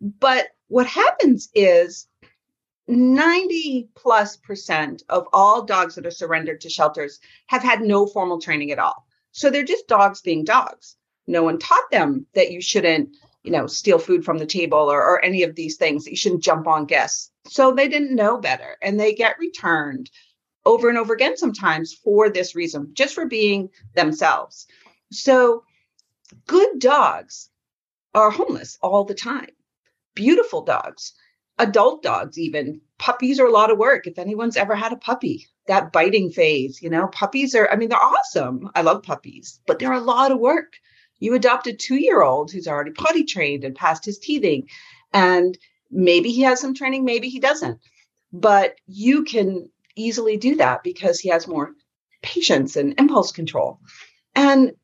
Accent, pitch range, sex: American, 180-275 Hz, female